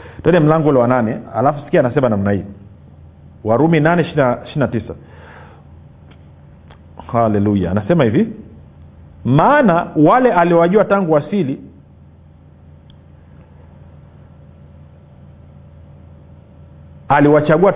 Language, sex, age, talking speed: Swahili, male, 50-69, 80 wpm